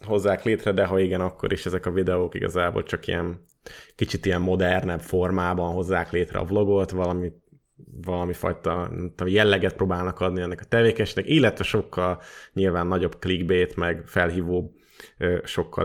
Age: 20-39